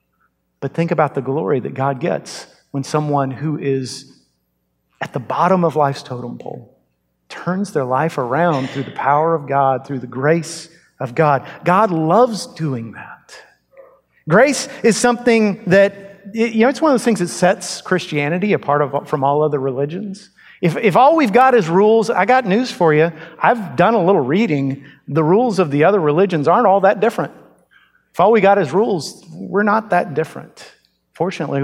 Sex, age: male, 50-69